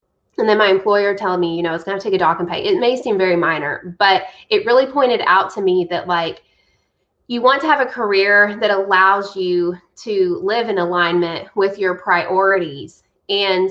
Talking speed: 210 wpm